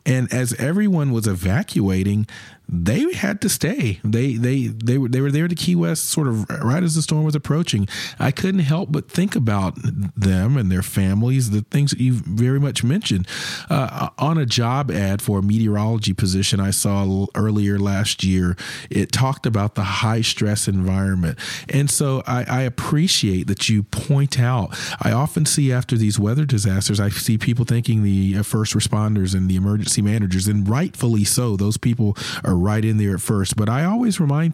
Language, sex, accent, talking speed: English, male, American, 185 wpm